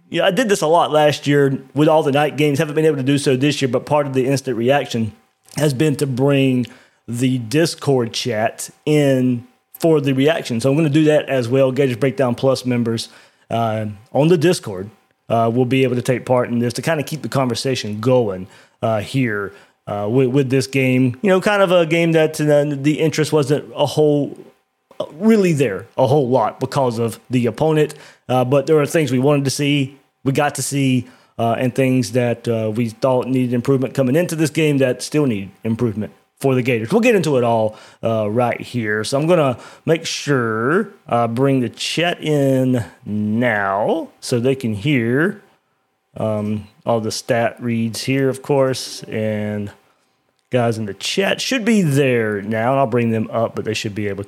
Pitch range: 115-145 Hz